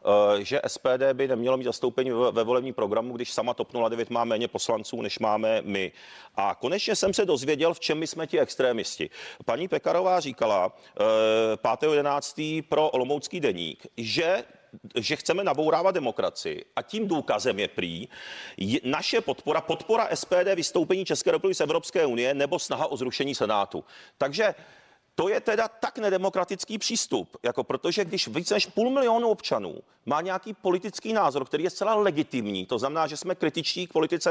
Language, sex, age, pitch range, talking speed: Czech, male, 40-59, 130-195 Hz, 170 wpm